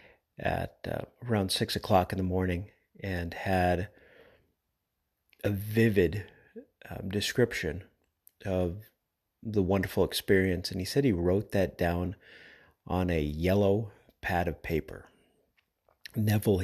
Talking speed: 115 wpm